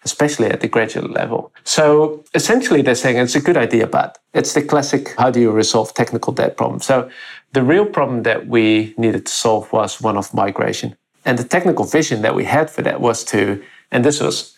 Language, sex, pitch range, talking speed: English, male, 115-145 Hz, 210 wpm